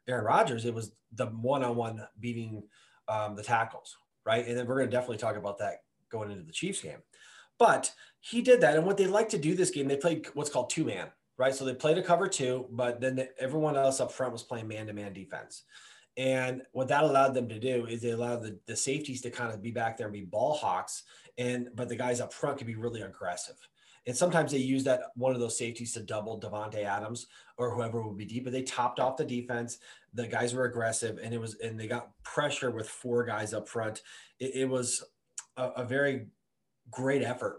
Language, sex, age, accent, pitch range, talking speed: English, male, 30-49, American, 115-135 Hz, 225 wpm